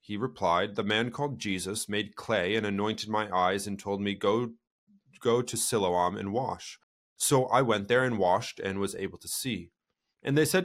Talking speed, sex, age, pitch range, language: 195 wpm, male, 30-49, 100-130 Hz, English